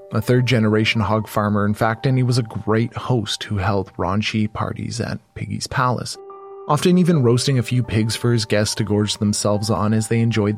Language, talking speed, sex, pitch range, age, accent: English, 200 wpm, male, 105-130 Hz, 20-39, American